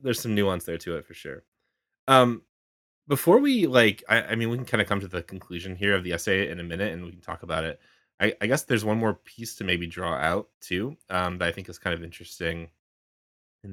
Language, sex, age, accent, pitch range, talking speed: English, male, 20-39, American, 85-110 Hz, 250 wpm